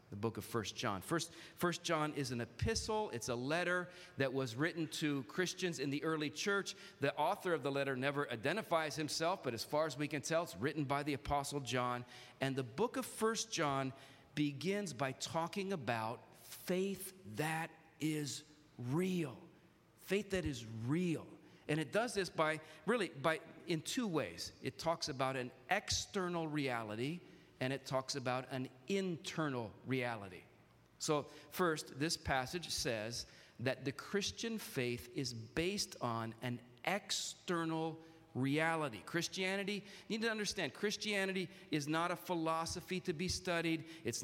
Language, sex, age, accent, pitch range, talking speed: English, male, 40-59, American, 135-175 Hz, 155 wpm